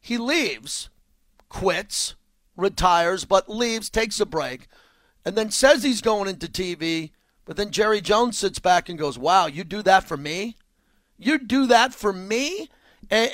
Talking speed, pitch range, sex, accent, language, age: 160 wpm, 170-225 Hz, male, American, English, 40-59